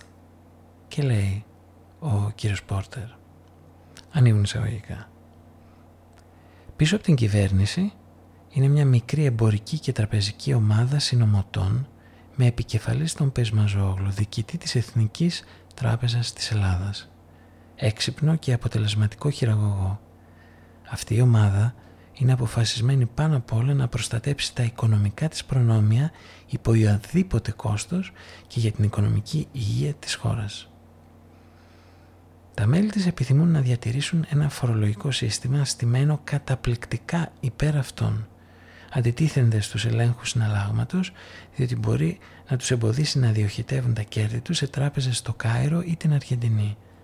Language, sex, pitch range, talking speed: Greek, male, 95-130 Hz, 115 wpm